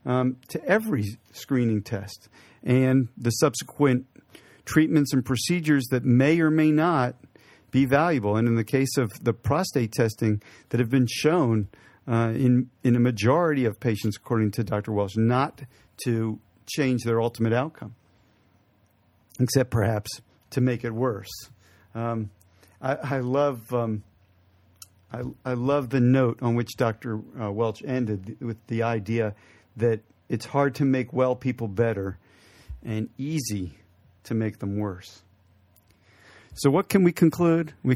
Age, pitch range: 50-69, 110-145 Hz